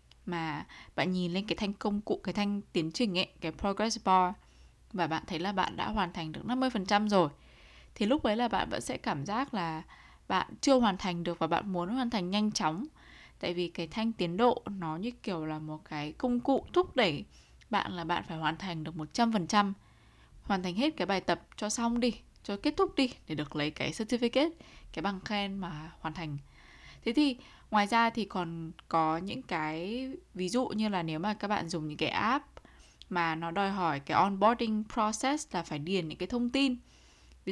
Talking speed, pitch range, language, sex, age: 210 wpm, 165-225 Hz, Vietnamese, female, 10-29